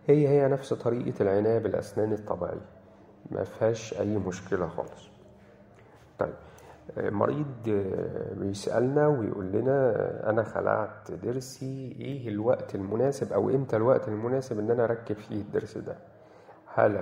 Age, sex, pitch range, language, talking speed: 40-59, male, 105-135 Hz, Arabic, 120 wpm